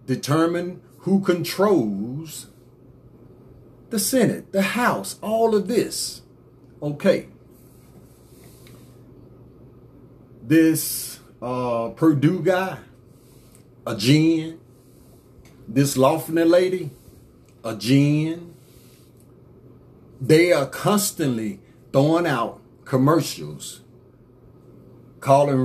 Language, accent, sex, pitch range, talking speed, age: English, American, male, 125-170 Hz, 70 wpm, 40-59